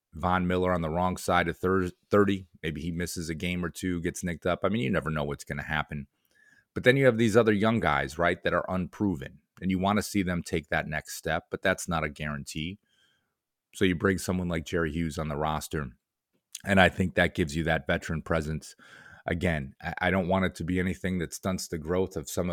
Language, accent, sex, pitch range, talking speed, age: English, American, male, 80-95 Hz, 230 wpm, 30-49